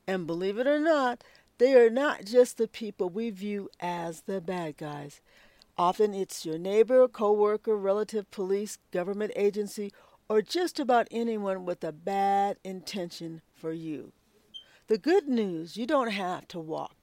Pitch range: 185-240 Hz